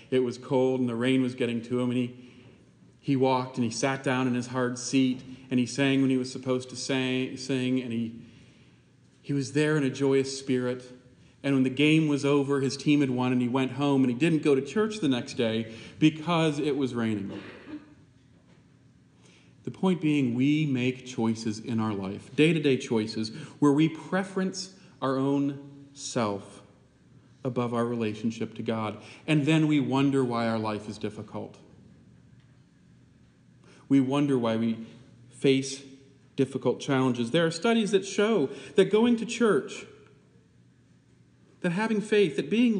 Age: 40-59